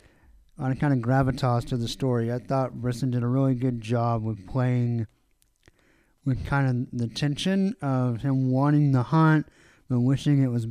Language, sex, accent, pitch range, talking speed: English, male, American, 120-150 Hz, 175 wpm